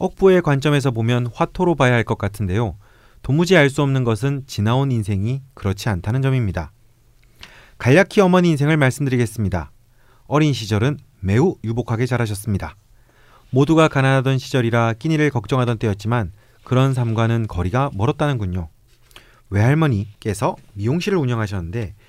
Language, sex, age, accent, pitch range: Korean, male, 30-49, native, 110-140 Hz